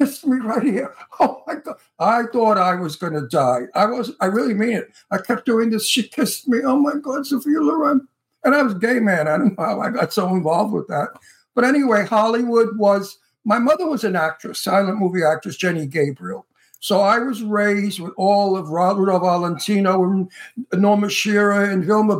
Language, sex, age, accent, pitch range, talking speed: English, male, 60-79, American, 175-220 Hz, 205 wpm